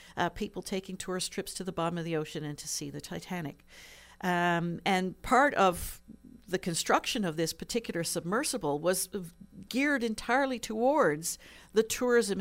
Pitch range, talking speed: 155-200 Hz, 155 wpm